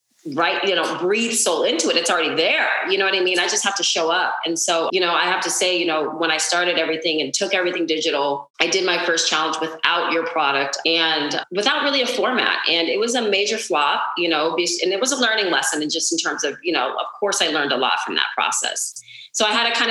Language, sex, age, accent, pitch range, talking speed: English, female, 30-49, American, 155-190 Hz, 260 wpm